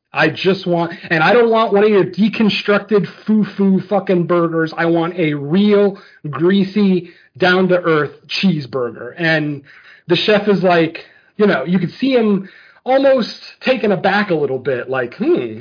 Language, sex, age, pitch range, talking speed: English, male, 30-49, 170-215 Hz, 155 wpm